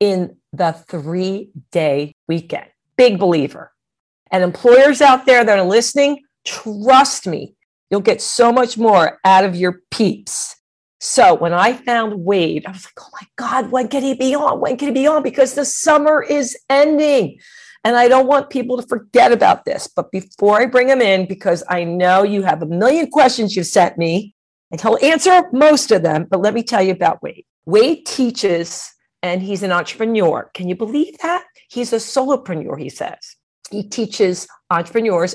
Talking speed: 185 wpm